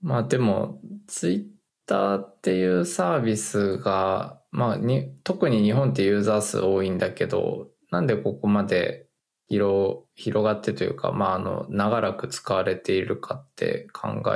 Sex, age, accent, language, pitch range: male, 20-39, native, Japanese, 100-145 Hz